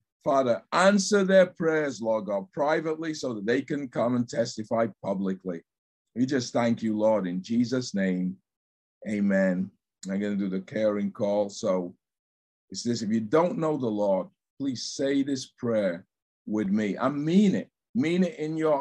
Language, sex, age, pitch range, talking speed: English, male, 50-69, 100-145 Hz, 170 wpm